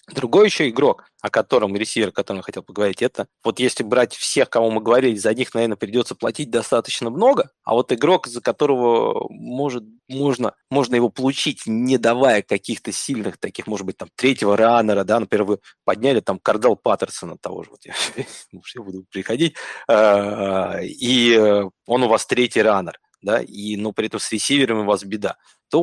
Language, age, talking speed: Russian, 20-39, 175 wpm